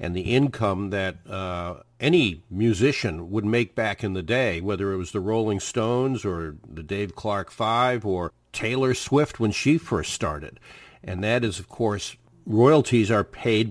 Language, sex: English, male